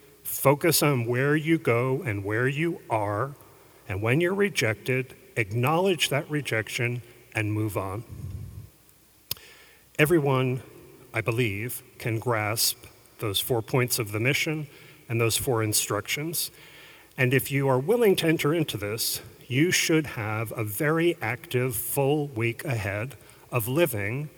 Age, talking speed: 40-59, 135 wpm